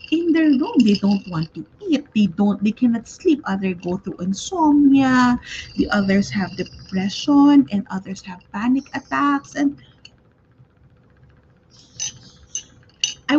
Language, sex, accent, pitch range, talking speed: English, female, Filipino, 180-255 Hz, 125 wpm